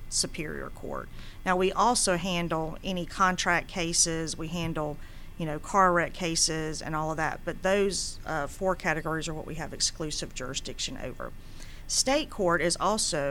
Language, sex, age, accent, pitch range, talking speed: English, female, 40-59, American, 155-185 Hz, 160 wpm